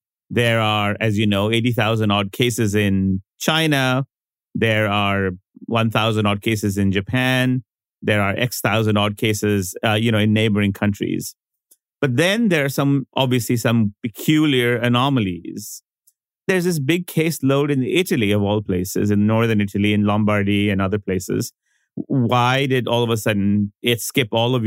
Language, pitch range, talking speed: English, 105-130 Hz, 150 wpm